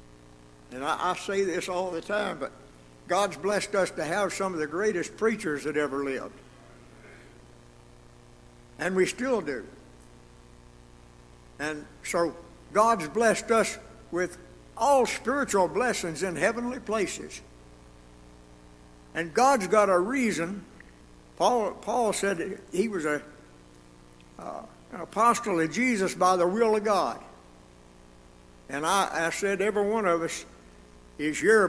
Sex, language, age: male, English, 60-79